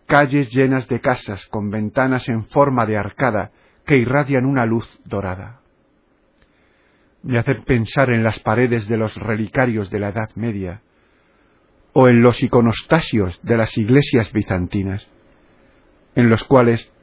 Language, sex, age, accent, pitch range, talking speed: Spanish, male, 50-69, Spanish, 105-130 Hz, 135 wpm